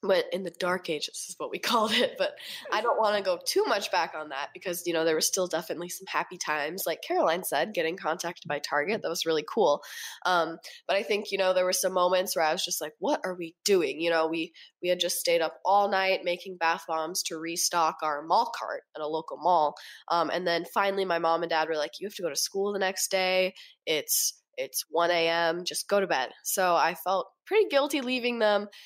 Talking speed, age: 245 wpm, 20-39